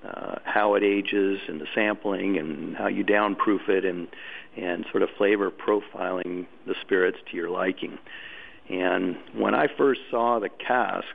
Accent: American